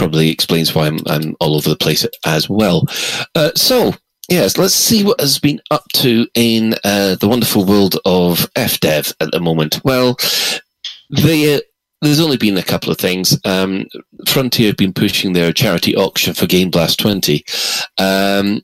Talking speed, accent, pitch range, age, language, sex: 170 wpm, British, 85-115 Hz, 30-49, English, male